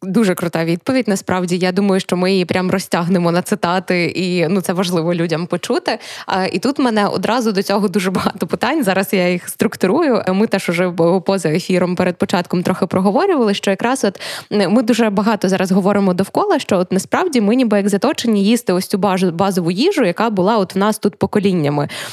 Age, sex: 20-39, female